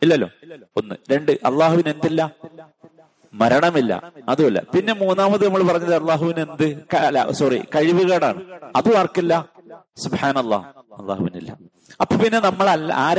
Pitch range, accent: 120-170 Hz, native